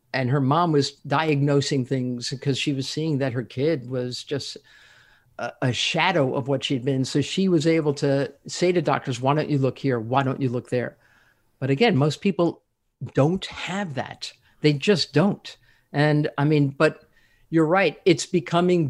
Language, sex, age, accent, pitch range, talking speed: English, male, 50-69, American, 135-160 Hz, 180 wpm